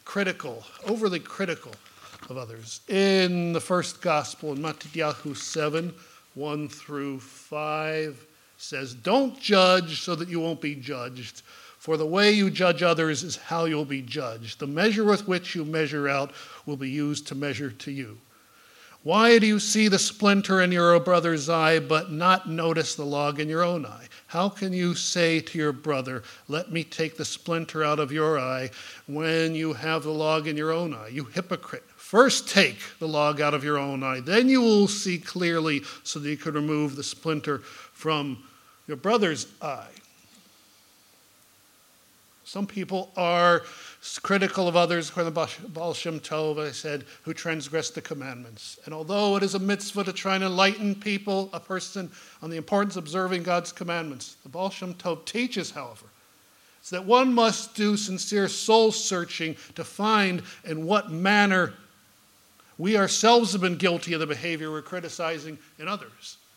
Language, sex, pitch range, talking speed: English, male, 150-195 Hz, 170 wpm